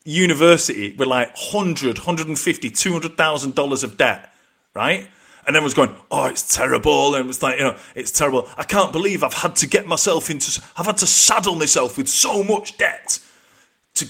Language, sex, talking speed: English, male, 185 wpm